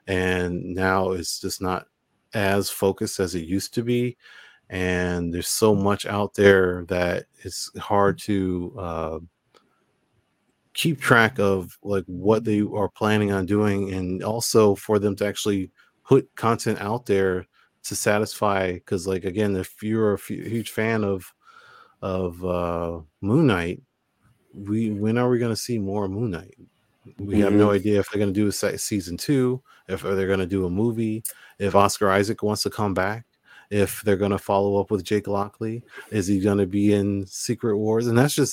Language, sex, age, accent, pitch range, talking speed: English, male, 30-49, American, 95-110 Hz, 180 wpm